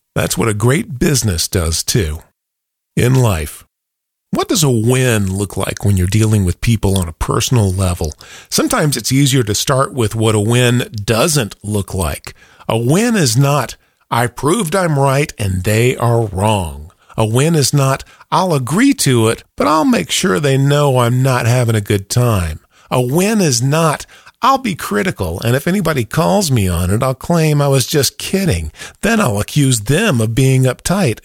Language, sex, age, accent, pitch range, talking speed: English, male, 50-69, American, 100-140 Hz, 180 wpm